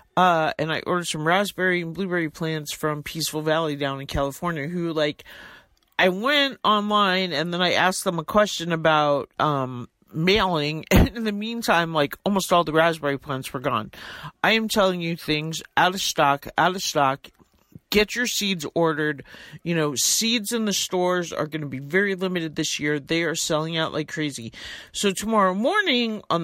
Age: 40-59